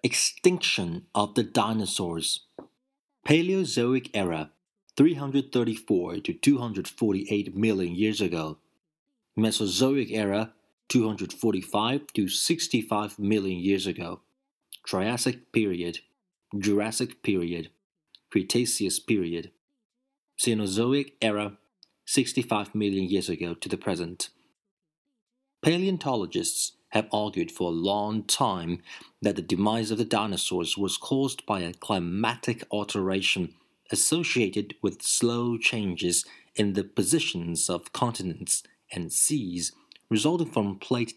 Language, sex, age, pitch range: Chinese, male, 30-49, 100-140 Hz